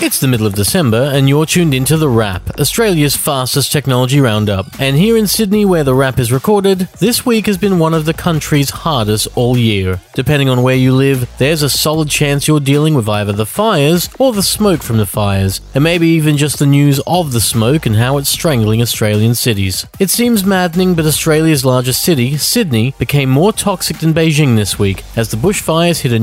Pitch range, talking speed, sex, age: 115-165 Hz, 210 wpm, male, 30-49